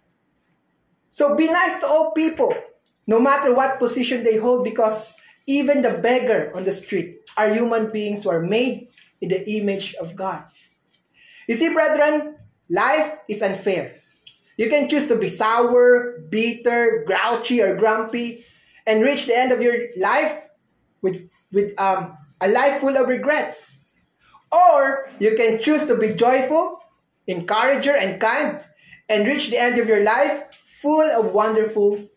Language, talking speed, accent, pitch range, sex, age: English, 150 wpm, Filipino, 205-280 Hz, male, 20-39